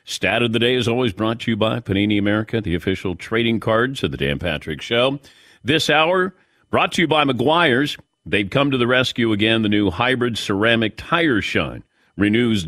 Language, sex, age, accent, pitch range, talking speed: English, male, 50-69, American, 100-135 Hz, 195 wpm